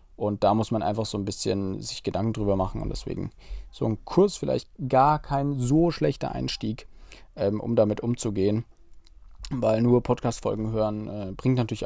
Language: German